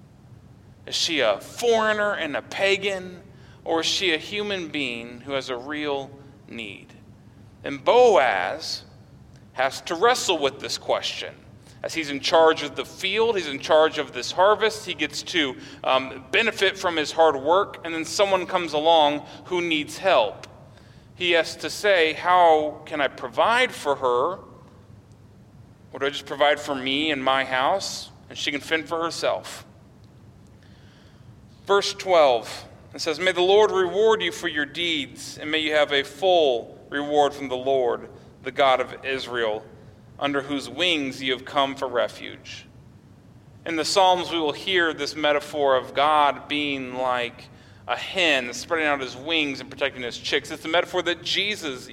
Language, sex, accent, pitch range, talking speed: English, male, American, 130-170 Hz, 165 wpm